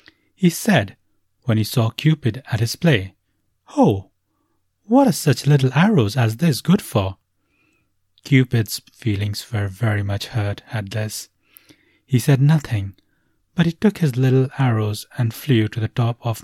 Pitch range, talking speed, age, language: 105-140 Hz, 155 wpm, 30-49, English